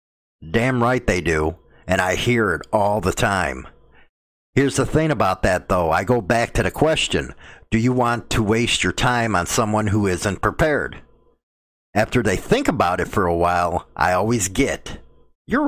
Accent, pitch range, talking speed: American, 95-130 Hz, 180 wpm